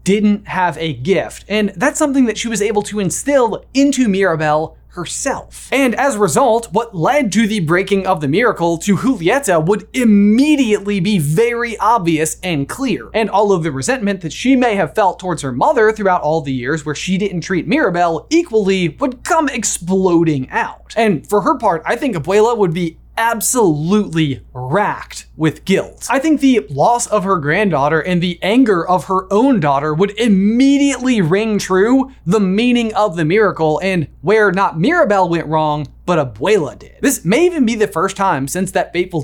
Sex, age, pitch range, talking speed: male, 20-39, 170-235 Hz, 180 wpm